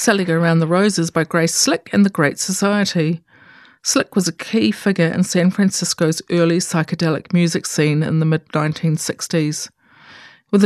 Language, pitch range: English, 165-210 Hz